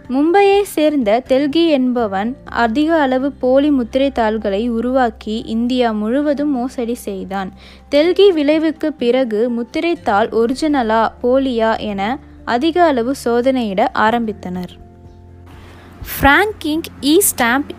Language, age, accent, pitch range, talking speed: Tamil, 20-39, native, 230-300 Hz, 90 wpm